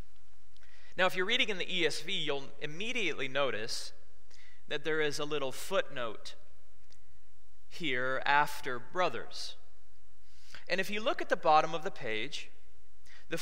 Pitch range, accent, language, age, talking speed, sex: 95-160 Hz, American, English, 30-49, 135 wpm, male